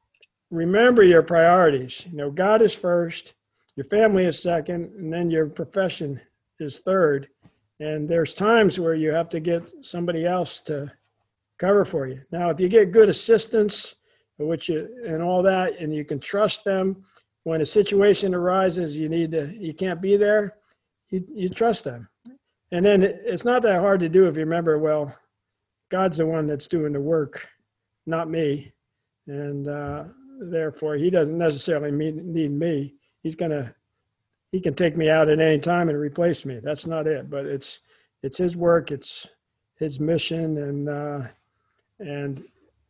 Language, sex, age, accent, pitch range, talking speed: English, male, 50-69, American, 145-190 Hz, 165 wpm